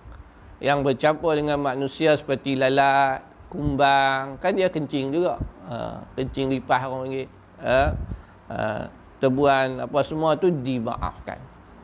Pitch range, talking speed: 115-145 Hz, 100 wpm